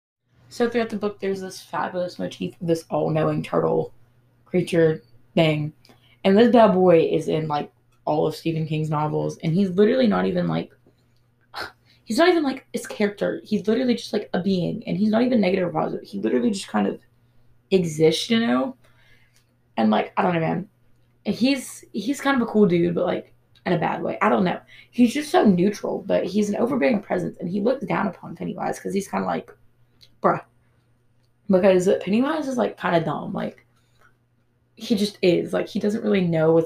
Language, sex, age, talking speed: English, female, 20-39, 195 wpm